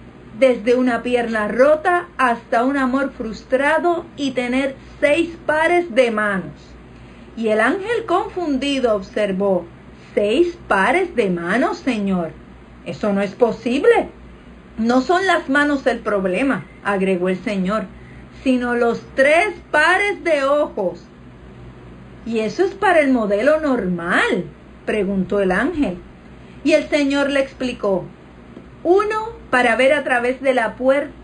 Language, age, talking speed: Spanish, 50-69, 125 wpm